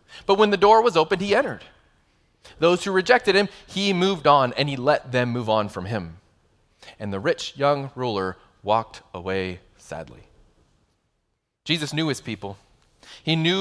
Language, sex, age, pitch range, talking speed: English, male, 30-49, 115-165 Hz, 165 wpm